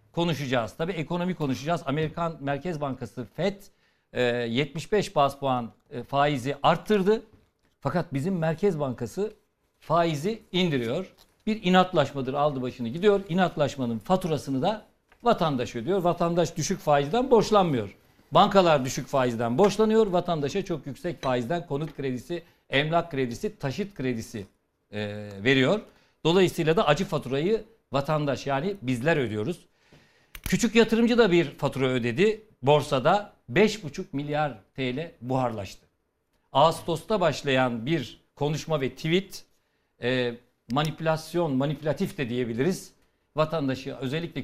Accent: native